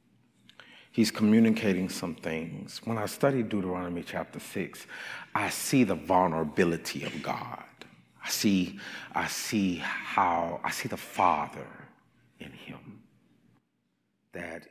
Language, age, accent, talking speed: English, 40-59, American, 115 wpm